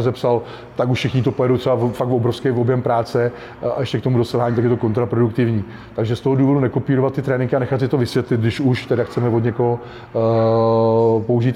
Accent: native